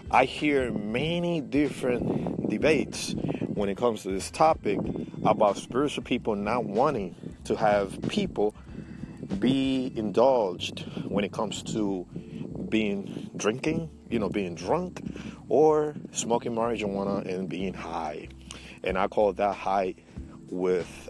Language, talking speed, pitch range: English, 120 wpm, 95-130 Hz